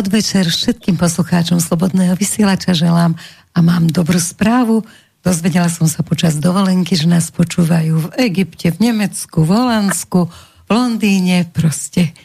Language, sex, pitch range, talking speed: Slovak, female, 165-195 Hz, 135 wpm